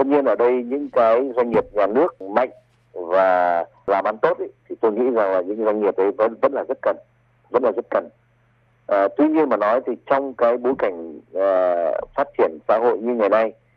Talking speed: 225 wpm